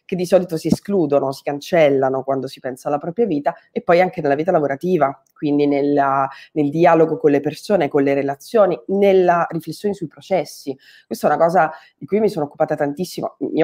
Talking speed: 190 wpm